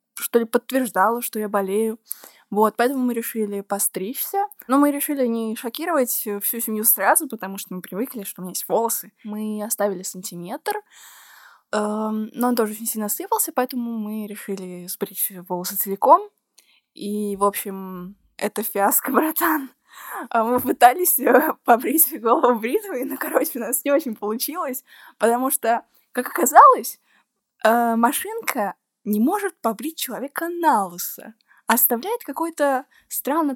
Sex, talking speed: female, 130 wpm